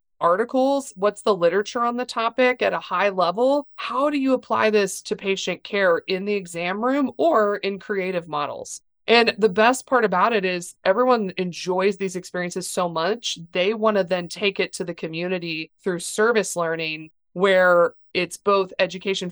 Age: 30-49